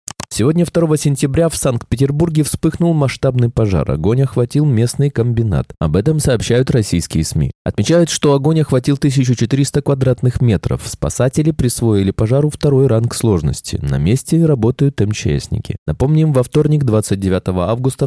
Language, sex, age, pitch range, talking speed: Russian, male, 20-39, 100-140 Hz, 130 wpm